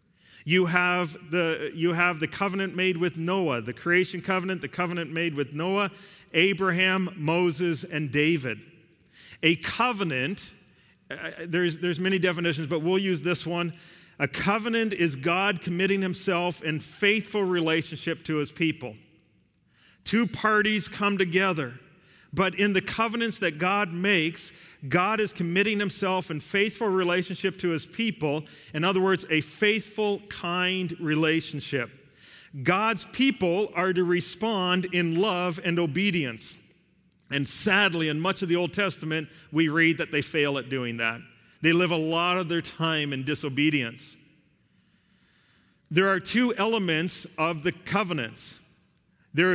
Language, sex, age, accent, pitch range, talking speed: English, male, 40-59, American, 160-190 Hz, 140 wpm